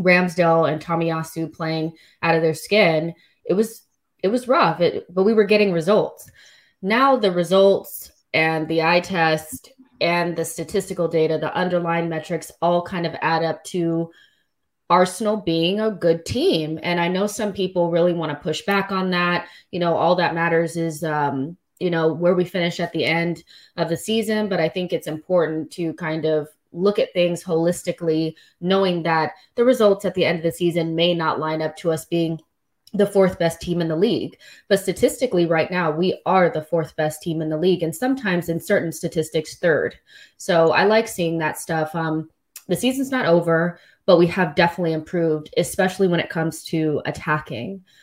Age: 20-39